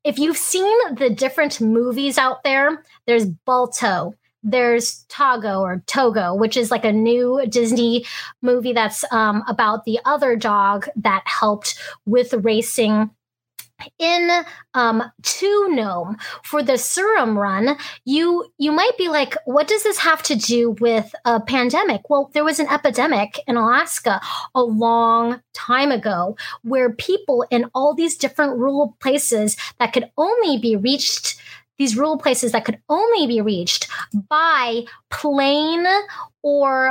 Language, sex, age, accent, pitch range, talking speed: English, female, 20-39, American, 230-295 Hz, 145 wpm